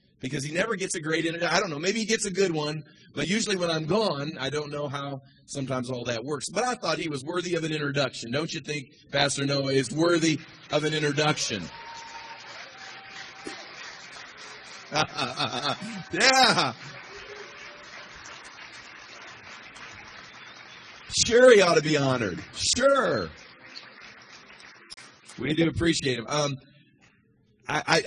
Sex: male